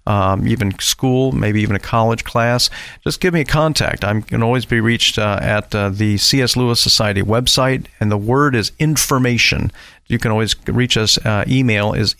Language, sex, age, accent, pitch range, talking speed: English, male, 50-69, American, 100-125 Hz, 190 wpm